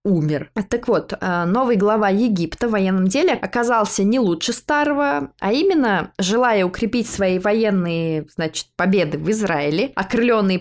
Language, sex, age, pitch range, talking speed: Russian, female, 20-39, 170-230 Hz, 130 wpm